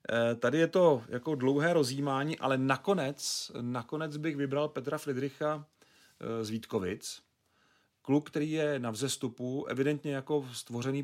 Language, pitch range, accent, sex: Czech, 115-140 Hz, native, male